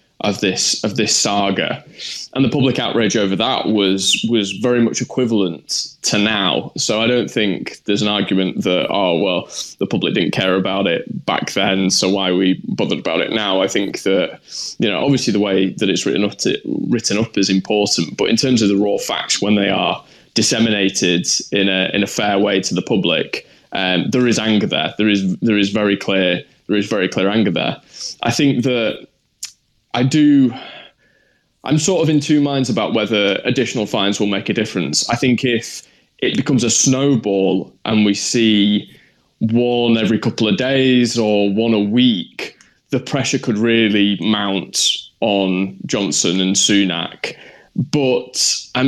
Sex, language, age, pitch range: male, English, 20-39, 95-125 Hz